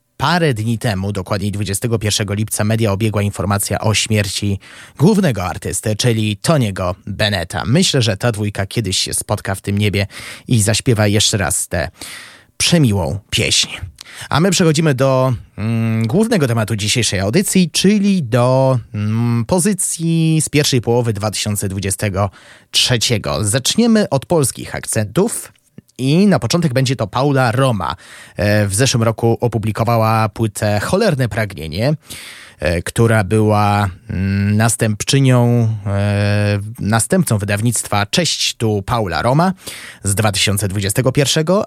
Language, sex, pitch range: Polish, male, 100-130 Hz